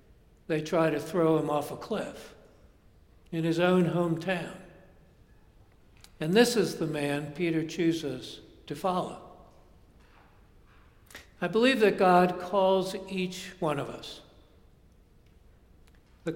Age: 60-79